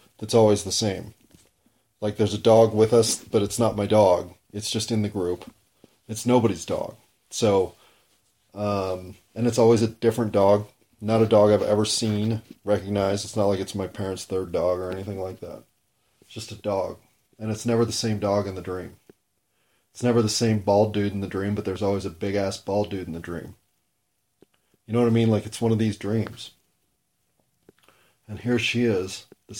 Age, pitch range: 30-49, 100-115 Hz